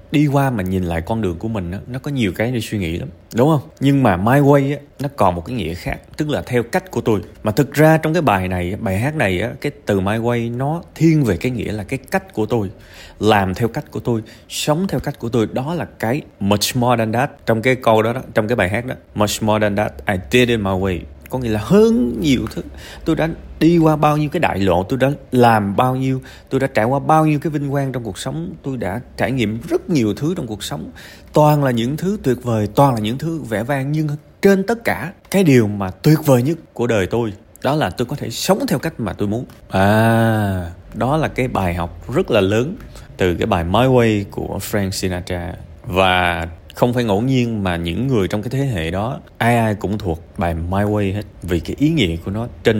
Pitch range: 95-140 Hz